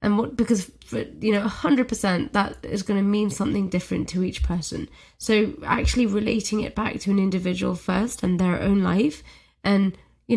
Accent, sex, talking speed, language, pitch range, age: British, female, 195 wpm, English, 185-215 Hz, 20-39